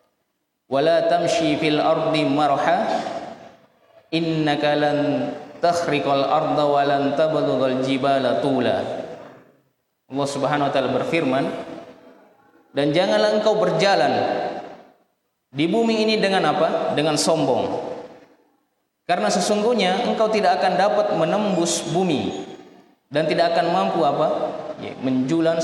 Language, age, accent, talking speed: Indonesian, 20-39, native, 80 wpm